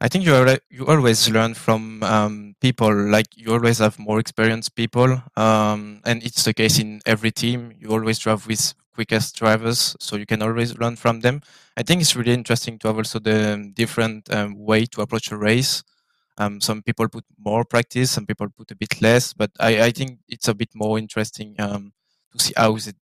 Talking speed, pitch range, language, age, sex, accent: 205 wpm, 110-120 Hz, English, 20-39, male, French